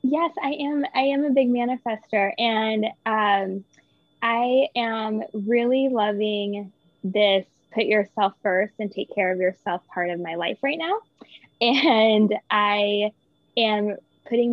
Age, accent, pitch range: 20-39, American, 190-220 Hz